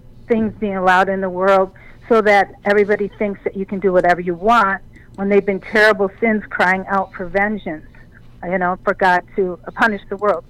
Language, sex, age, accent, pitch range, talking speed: English, female, 50-69, American, 185-220 Hz, 195 wpm